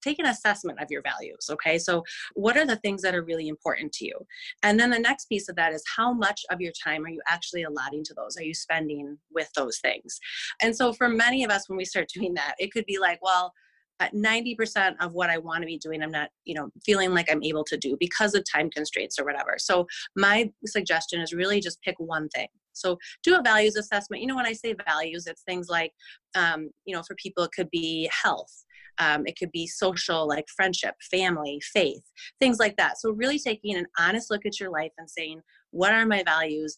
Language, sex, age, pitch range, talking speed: English, female, 30-49, 160-210 Hz, 235 wpm